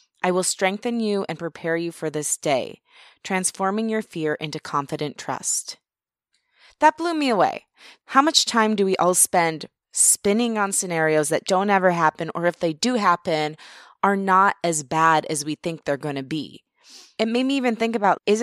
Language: English